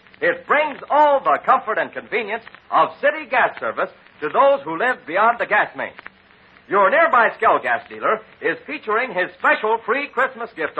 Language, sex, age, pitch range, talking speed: English, male, 60-79, 225-290 Hz, 170 wpm